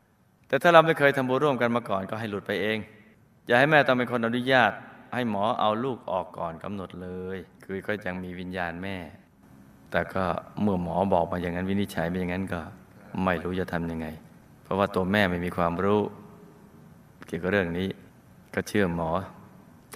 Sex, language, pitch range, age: male, Thai, 90-120 Hz, 20-39